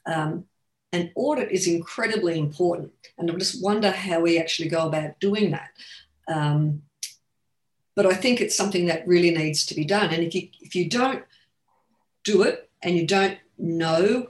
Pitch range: 155-185 Hz